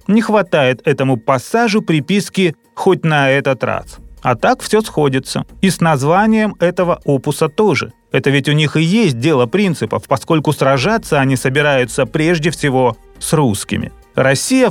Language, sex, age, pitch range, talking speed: Russian, male, 30-49, 145-195 Hz, 145 wpm